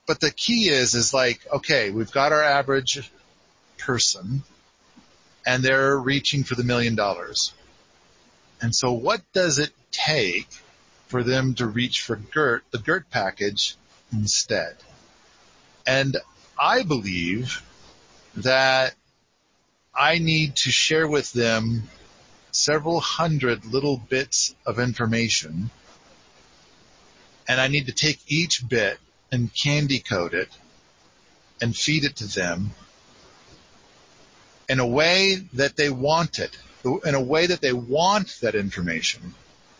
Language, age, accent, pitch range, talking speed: English, 40-59, American, 115-150 Hz, 120 wpm